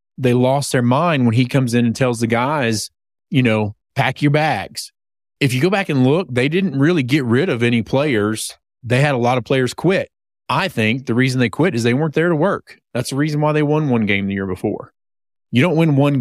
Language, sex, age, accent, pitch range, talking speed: English, male, 30-49, American, 115-140 Hz, 240 wpm